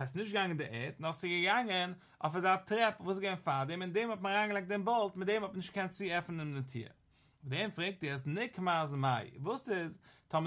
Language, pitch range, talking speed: English, 140-190 Hz, 230 wpm